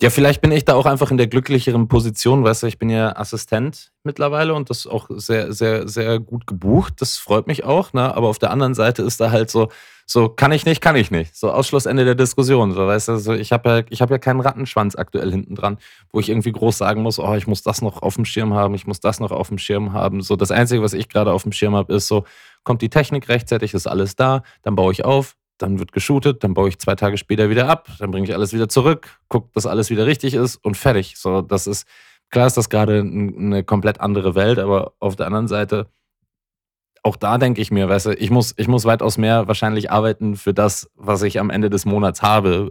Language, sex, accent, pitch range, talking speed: German, male, German, 100-120 Hz, 245 wpm